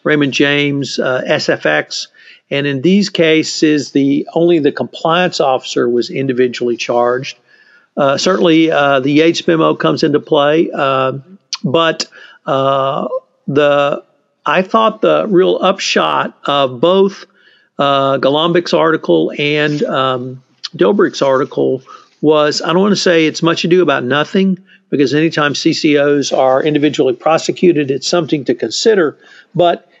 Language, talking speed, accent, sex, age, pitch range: English, 130 wpm, American, male, 50-69, 135-180 Hz